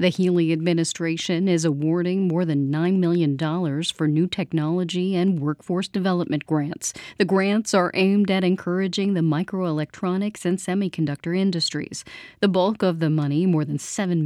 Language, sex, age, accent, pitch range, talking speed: English, female, 40-59, American, 155-185 Hz, 145 wpm